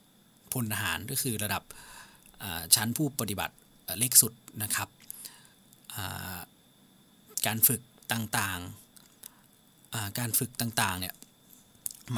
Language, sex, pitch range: Thai, male, 100-125 Hz